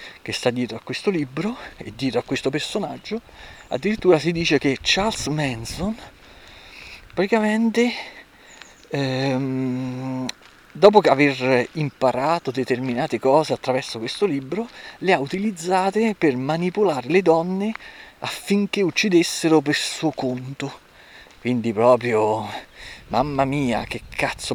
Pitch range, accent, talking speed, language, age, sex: 130-180 Hz, native, 110 wpm, Italian, 40-59, male